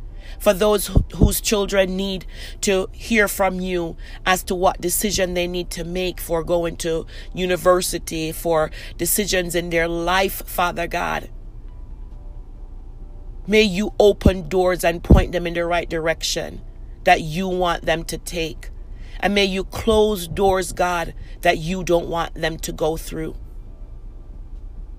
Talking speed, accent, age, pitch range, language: 140 wpm, American, 40-59, 175-195 Hz, English